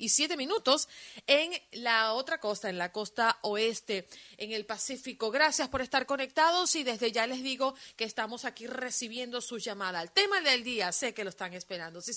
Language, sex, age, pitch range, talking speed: Spanish, female, 30-49, 210-260 Hz, 190 wpm